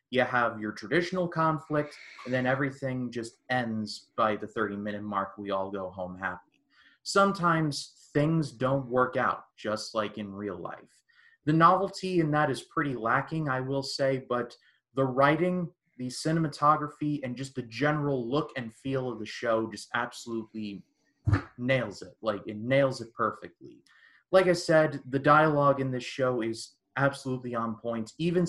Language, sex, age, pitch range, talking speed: English, male, 30-49, 110-140 Hz, 160 wpm